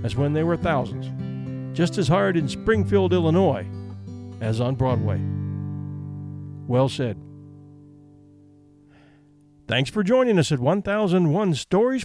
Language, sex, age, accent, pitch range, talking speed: English, male, 50-69, American, 125-185 Hz, 115 wpm